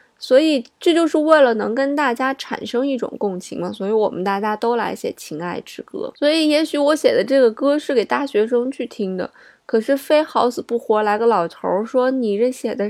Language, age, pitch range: Chinese, 20-39, 210-280 Hz